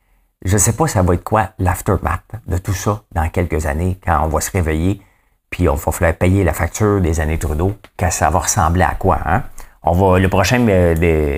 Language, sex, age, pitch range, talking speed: English, male, 50-69, 85-105 Hz, 220 wpm